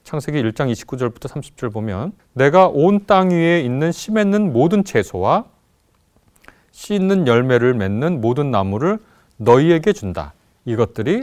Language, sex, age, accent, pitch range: Korean, male, 30-49, native, 110-175 Hz